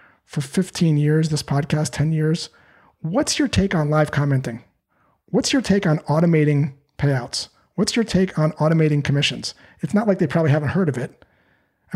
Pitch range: 140-170 Hz